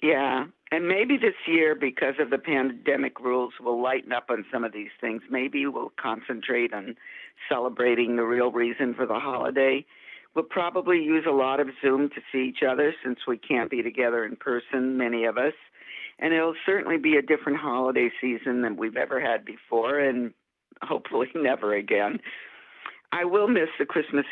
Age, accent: 50-69, American